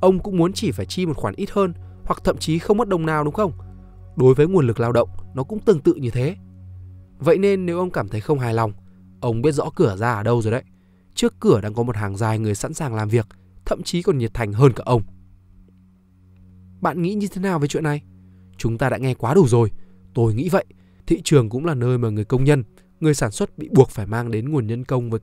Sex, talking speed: male, 255 wpm